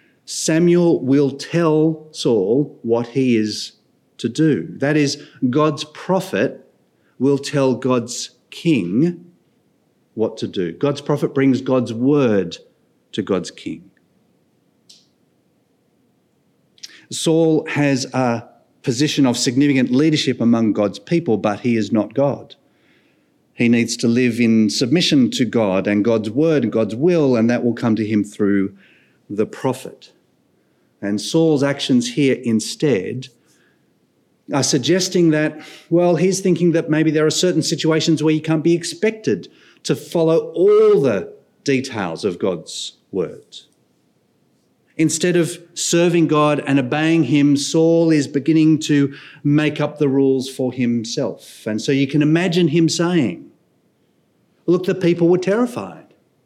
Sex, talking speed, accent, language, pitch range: male, 135 wpm, Australian, English, 125-165 Hz